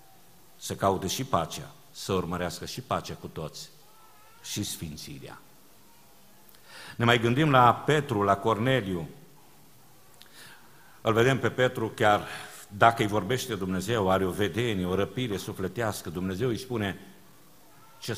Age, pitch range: 50-69, 90-110 Hz